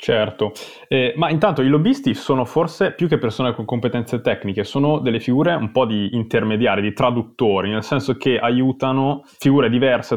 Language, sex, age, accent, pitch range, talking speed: Italian, male, 20-39, native, 95-125 Hz, 170 wpm